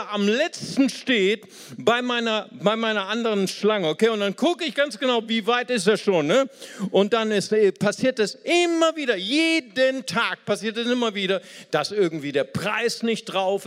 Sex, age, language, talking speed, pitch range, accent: male, 50-69, German, 180 wpm, 160-235 Hz, German